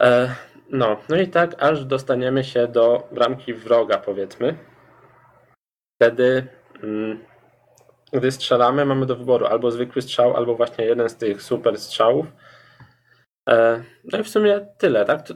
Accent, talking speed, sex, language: native, 135 wpm, male, Polish